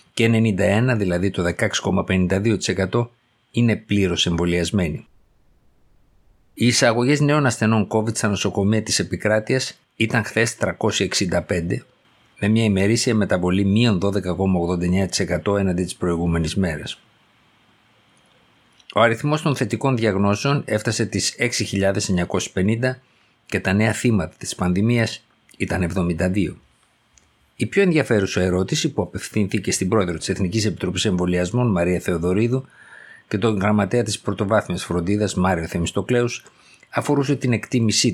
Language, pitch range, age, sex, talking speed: Greek, 90-115 Hz, 50-69, male, 110 wpm